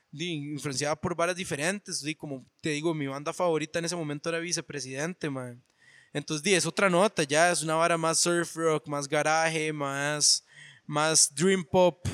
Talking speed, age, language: 180 wpm, 20-39, Spanish